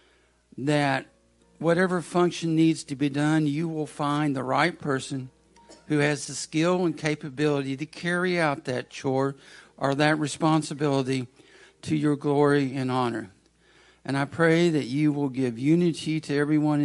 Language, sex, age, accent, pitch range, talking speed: English, male, 60-79, American, 145-175 Hz, 150 wpm